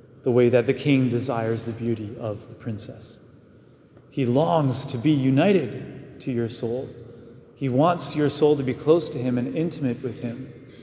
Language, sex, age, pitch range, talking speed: English, male, 30-49, 115-130 Hz, 175 wpm